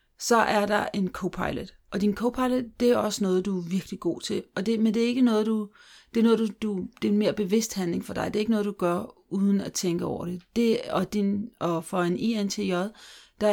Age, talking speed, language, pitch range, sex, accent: 40-59, 255 wpm, Danish, 180-215 Hz, female, native